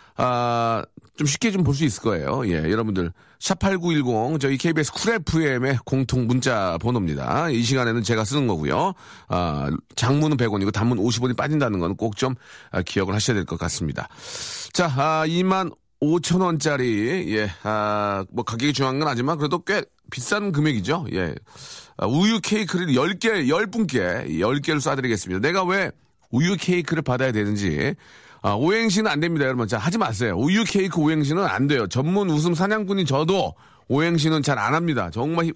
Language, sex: Korean, male